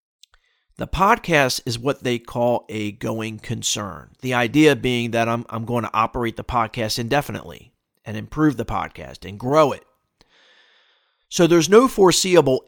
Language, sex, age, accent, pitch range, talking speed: English, male, 40-59, American, 115-150 Hz, 150 wpm